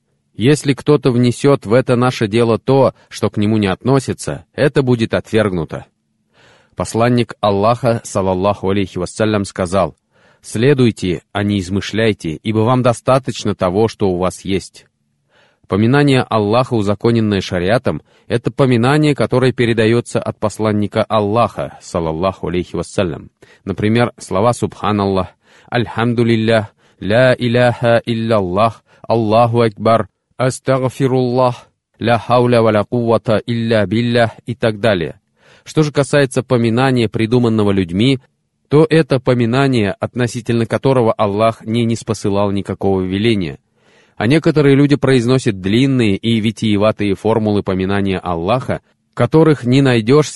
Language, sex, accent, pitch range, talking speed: Russian, male, native, 100-125 Hz, 115 wpm